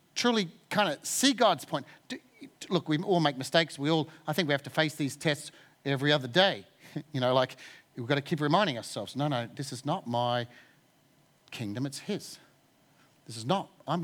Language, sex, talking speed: English, male, 195 wpm